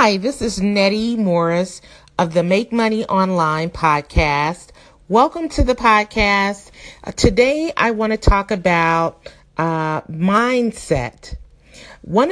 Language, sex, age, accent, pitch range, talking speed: English, female, 40-59, American, 165-230 Hz, 115 wpm